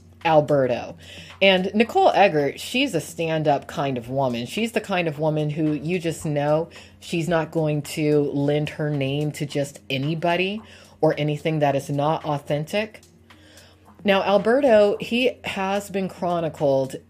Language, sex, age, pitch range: English, female, 30-49, 140-175 Hz